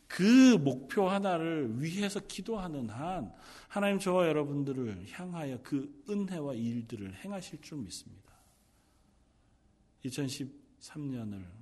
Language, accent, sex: Korean, native, male